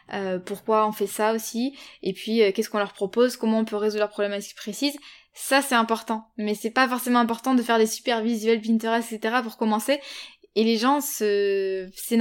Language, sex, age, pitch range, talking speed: French, female, 10-29, 210-245 Hz, 200 wpm